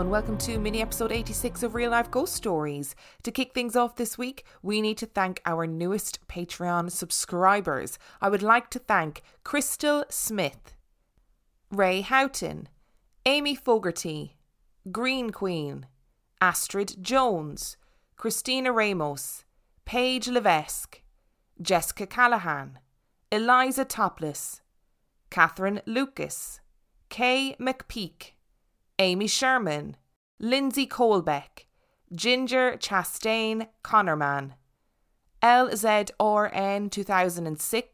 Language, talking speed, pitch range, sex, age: English, 95 wpm, 180-235 Hz, female, 20-39